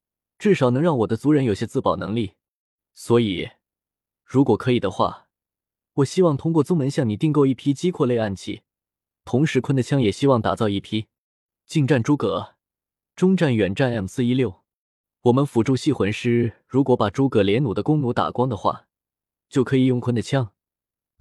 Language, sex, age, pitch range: Chinese, male, 20-39, 110-155 Hz